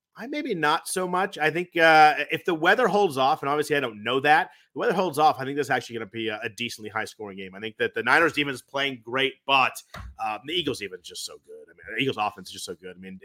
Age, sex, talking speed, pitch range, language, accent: 30-49, male, 295 wpm, 110-145 Hz, English, American